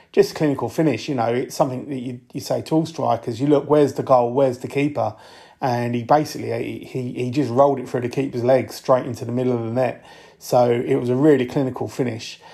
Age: 30-49